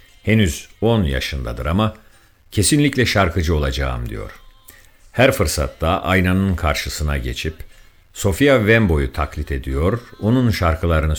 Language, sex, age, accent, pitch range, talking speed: Turkish, male, 50-69, native, 75-100 Hz, 100 wpm